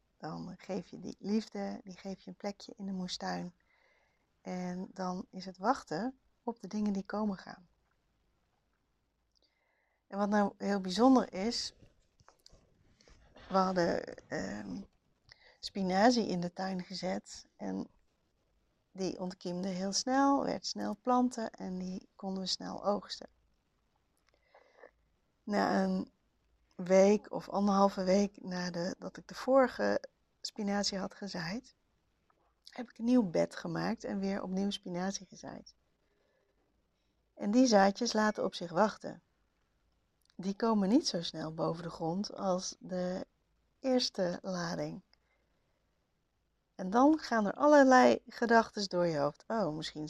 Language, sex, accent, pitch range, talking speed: Dutch, female, Dutch, 180-230 Hz, 125 wpm